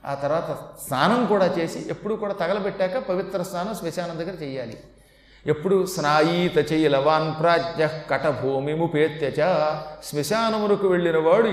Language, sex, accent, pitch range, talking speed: Telugu, male, native, 160-210 Hz, 125 wpm